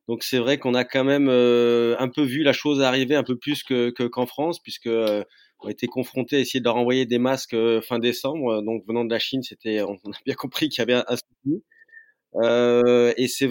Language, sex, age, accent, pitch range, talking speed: French, male, 20-39, French, 120-135 Hz, 245 wpm